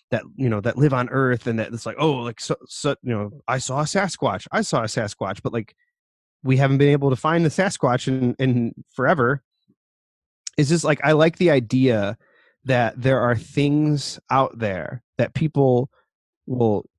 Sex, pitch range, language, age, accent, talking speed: male, 115-140 Hz, English, 30-49, American, 190 wpm